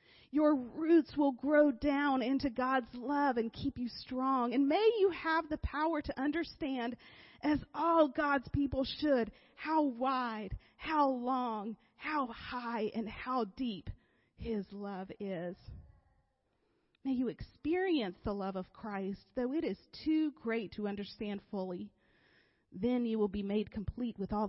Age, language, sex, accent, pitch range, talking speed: 40-59, English, female, American, 205-275 Hz, 145 wpm